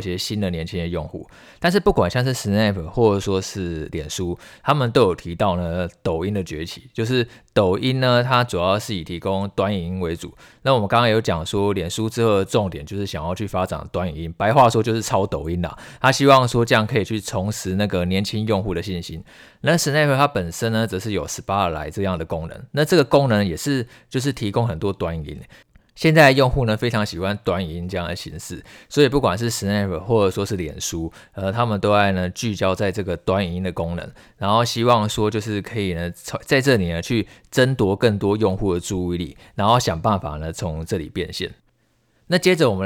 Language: Chinese